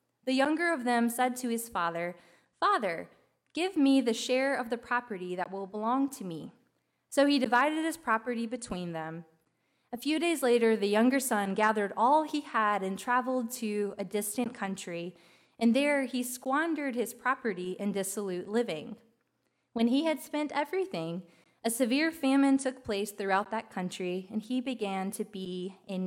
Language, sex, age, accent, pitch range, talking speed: English, female, 20-39, American, 200-260 Hz, 170 wpm